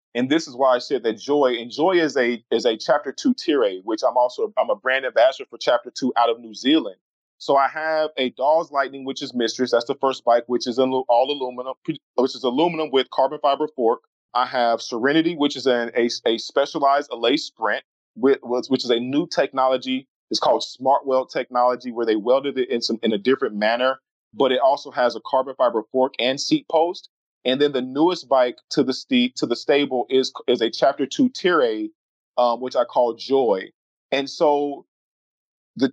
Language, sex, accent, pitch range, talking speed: English, male, American, 125-160 Hz, 200 wpm